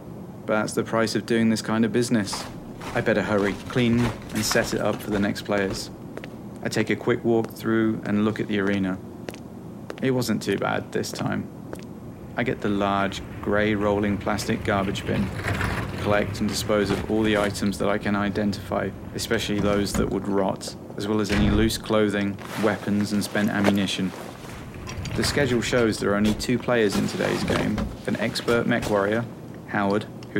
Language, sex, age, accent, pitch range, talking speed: English, male, 30-49, British, 100-115 Hz, 180 wpm